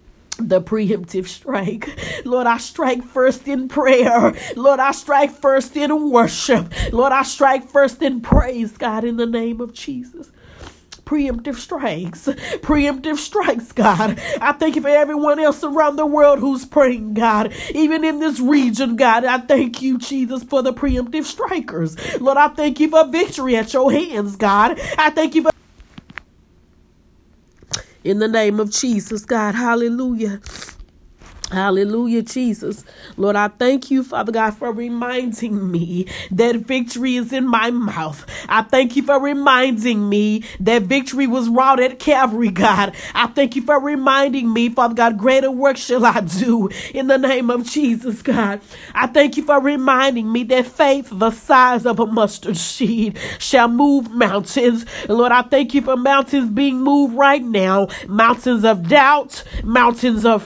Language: English